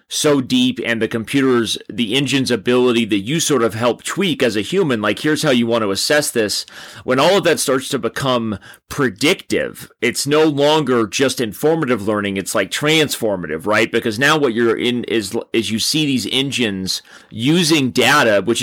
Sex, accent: male, American